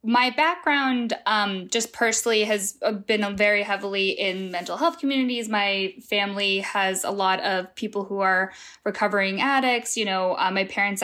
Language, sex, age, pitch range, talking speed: English, female, 10-29, 200-235 Hz, 160 wpm